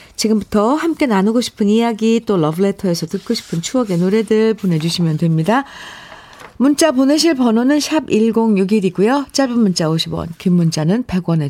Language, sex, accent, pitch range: Korean, female, native, 165-245 Hz